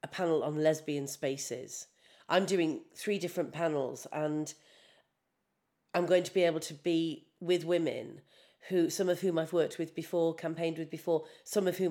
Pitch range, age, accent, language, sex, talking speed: 155-215 Hz, 40-59, British, English, female, 170 wpm